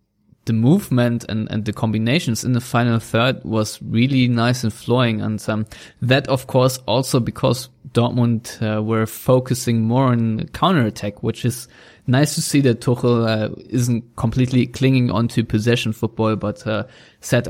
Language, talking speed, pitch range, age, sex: English, 160 wpm, 110-125 Hz, 20-39, male